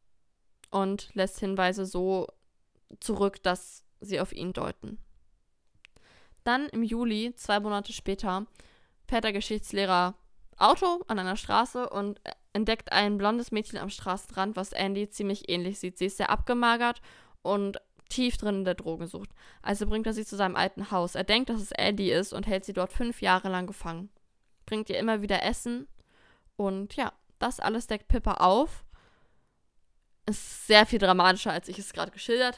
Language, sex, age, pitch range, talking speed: German, female, 20-39, 185-220 Hz, 160 wpm